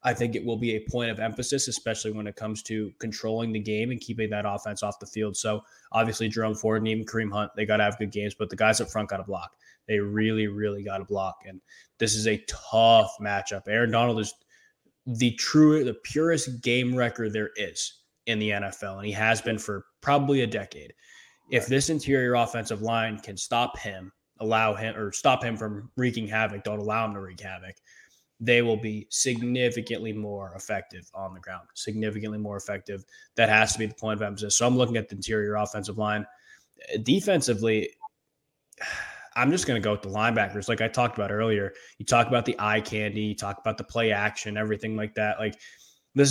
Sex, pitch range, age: male, 105-120 Hz, 20-39